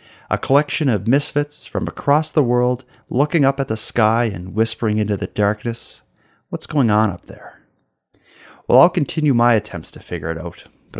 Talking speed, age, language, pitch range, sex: 180 wpm, 30-49, English, 95-135 Hz, male